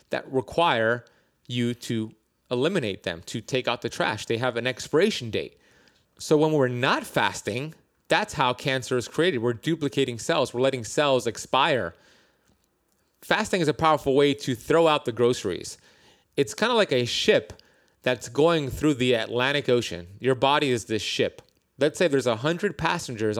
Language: English